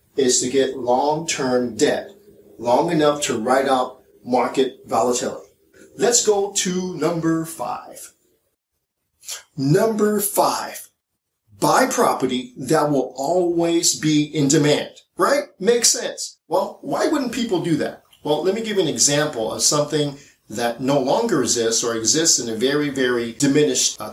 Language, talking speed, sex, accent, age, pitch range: English, 140 wpm, male, American, 40-59, 130-180 Hz